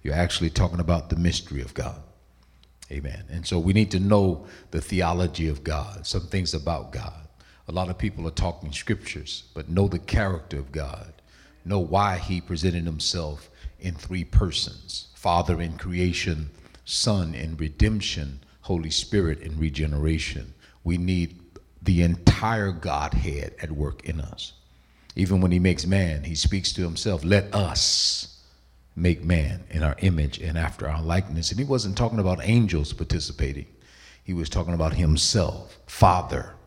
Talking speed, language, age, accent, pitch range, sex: 155 wpm, English, 50-69, American, 75-95 Hz, male